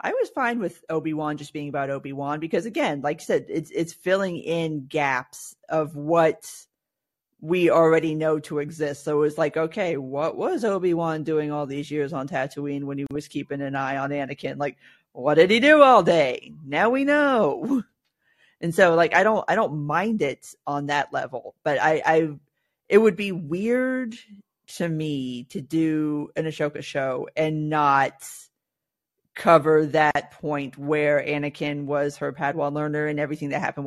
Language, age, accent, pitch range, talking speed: English, 40-59, American, 145-170 Hz, 175 wpm